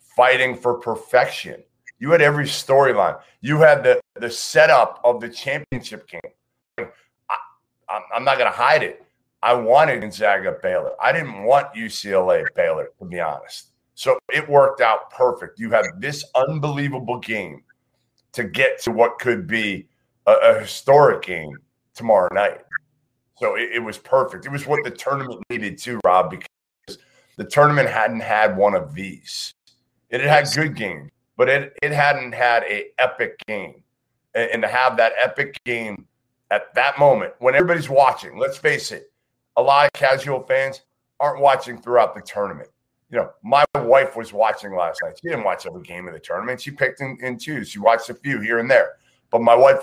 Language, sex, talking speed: English, male, 175 wpm